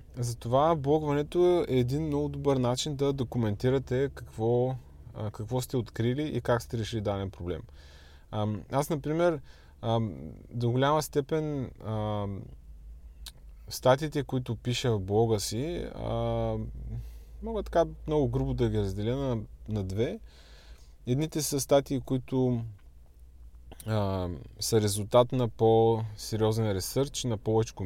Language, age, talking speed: Bulgarian, 20-39, 115 wpm